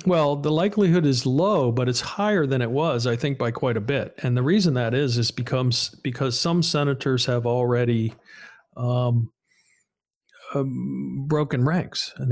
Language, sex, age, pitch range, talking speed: English, male, 50-69, 120-160 Hz, 165 wpm